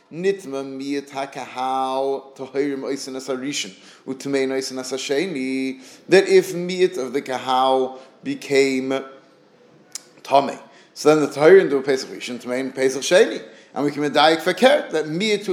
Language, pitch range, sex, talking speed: English, 140-190 Hz, male, 85 wpm